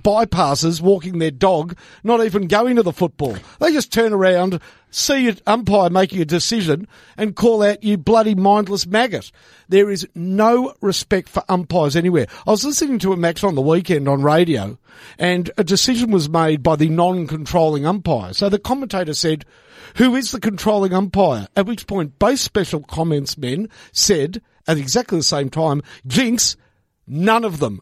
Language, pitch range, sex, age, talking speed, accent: English, 155-205 Hz, male, 50-69, 175 wpm, Australian